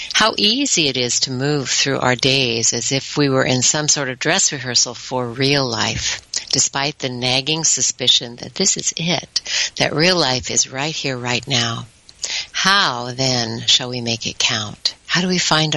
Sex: female